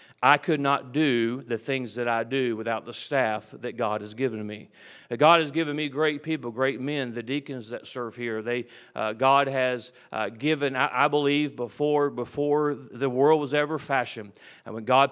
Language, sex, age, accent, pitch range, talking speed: English, male, 40-59, American, 120-145 Hz, 195 wpm